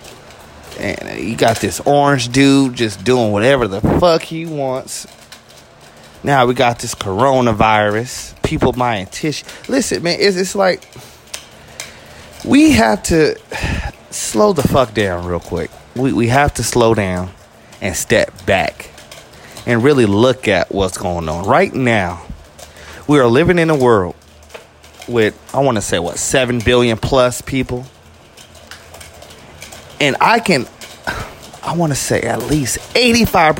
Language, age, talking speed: English, 30-49, 140 wpm